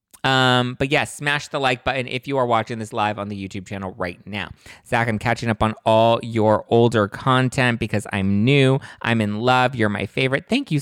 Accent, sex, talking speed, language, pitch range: American, male, 215 wpm, English, 110-135 Hz